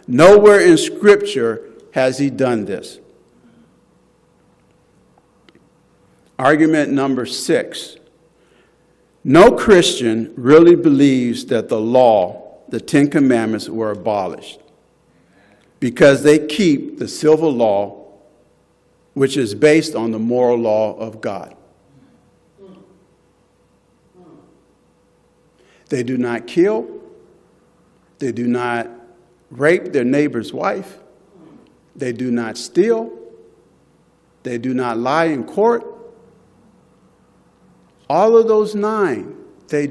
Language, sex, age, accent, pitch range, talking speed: English, male, 50-69, American, 125-210 Hz, 95 wpm